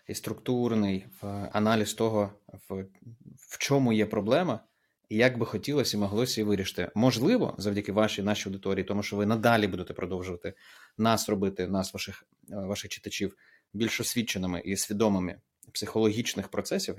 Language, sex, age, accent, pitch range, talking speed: Ukrainian, male, 30-49, native, 100-120 Hz, 145 wpm